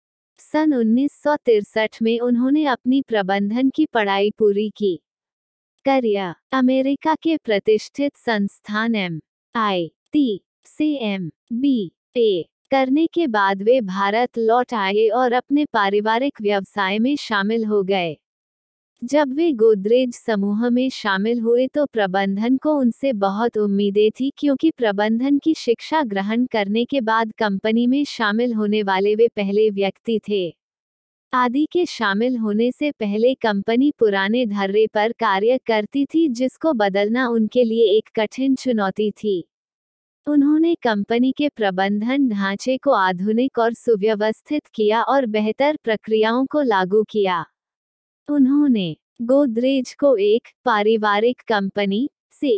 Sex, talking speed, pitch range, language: female, 125 wpm, 210-270 Hz, Hindi